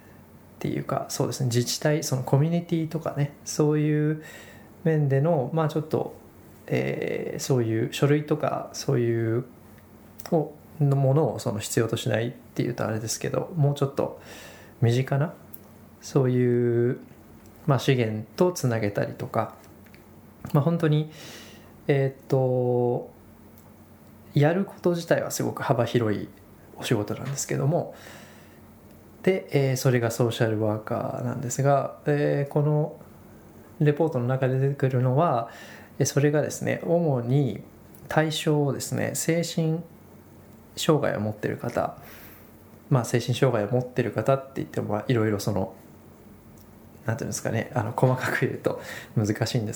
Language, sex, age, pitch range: Japanese, male, 20-39, 110-150 Hz